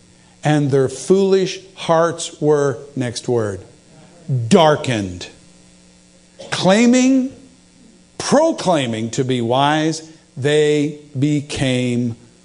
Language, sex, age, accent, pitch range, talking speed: English, male, 50-69, American, 125-170 Hz, 70 wpm